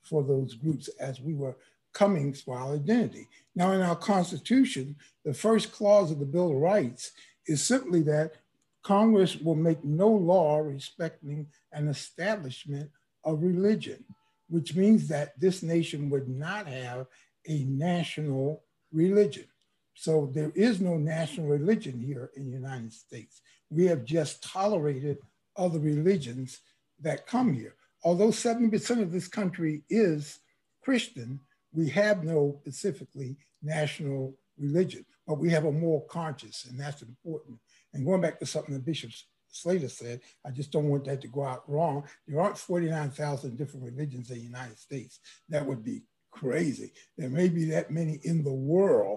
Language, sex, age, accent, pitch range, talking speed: English, male, 60-79, American, 140-175 Hz, 155 wpm